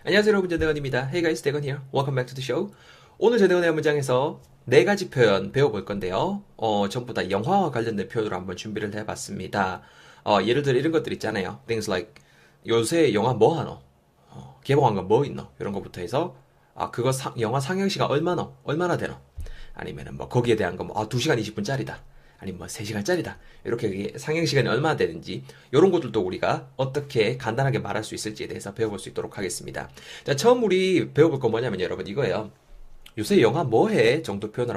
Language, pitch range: Korean, 100-155 Hz